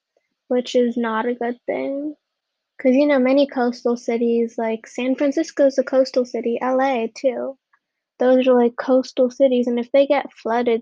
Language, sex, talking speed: English, female, 170 wpm